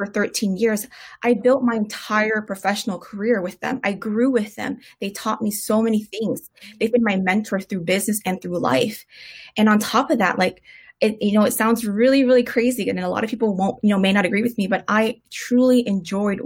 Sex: female